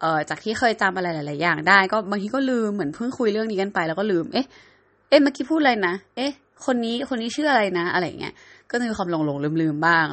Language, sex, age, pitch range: Thai, female, 20-39, 180-250 Hz